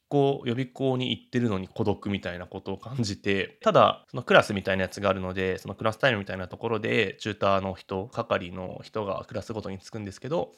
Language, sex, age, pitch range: Japanese, male, 20-39, 95-125 Hz